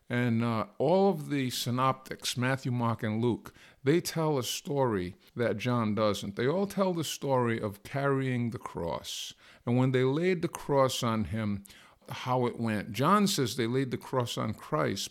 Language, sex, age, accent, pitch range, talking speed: English, male, 50-69, American, 120-165 Hz, 180 wpm